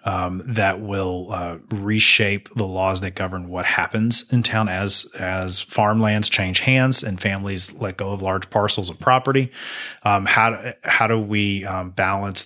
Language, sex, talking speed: English, male, 170 wpm